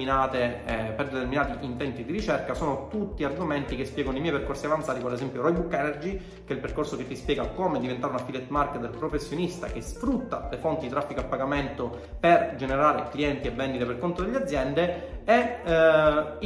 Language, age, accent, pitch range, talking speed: Italian, 30-49, native, 130-190 Hz, 185 wpm